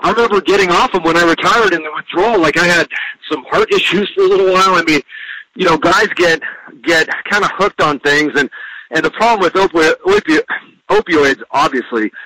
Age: 40-59